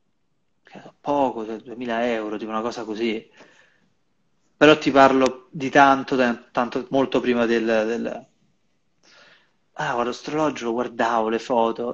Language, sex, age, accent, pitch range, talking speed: Italian, male, 30-49, native, 115-145 Hz, 125 wpm